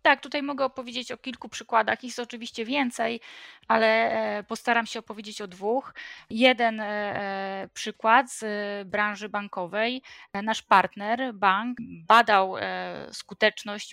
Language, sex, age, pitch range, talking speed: Polish, female, 20-39, 195-230 Hz, 110 wpm